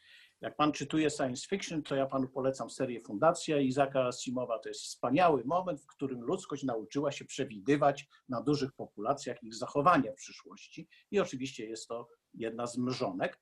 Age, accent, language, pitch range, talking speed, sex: 50-69, native, Polish, 125-165 Hz, 165 wpm, male